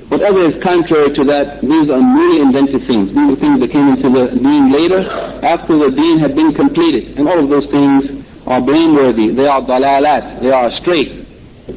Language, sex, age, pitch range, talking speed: English, male, 50-69, 130-145 Hz, 200 wpm